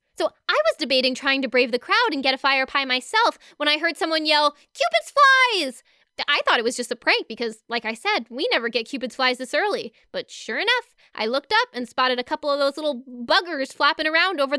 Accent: American